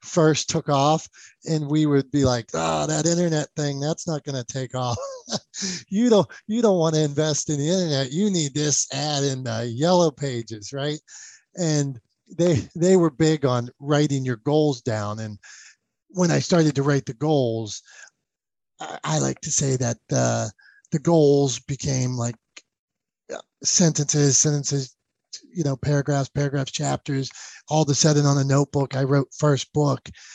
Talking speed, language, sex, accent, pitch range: 165 wpm, English, male, American, 130-165 Hz